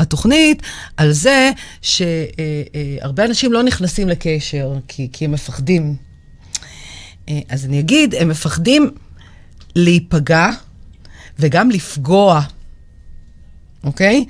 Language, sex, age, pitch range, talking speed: Hebrew, female, 40-59, 145-210 Hz, 90 wpm